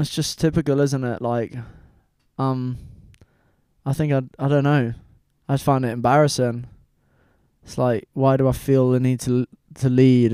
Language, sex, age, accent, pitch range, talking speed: English, male, 20-39, British, 115-130 Hz, 170 wpm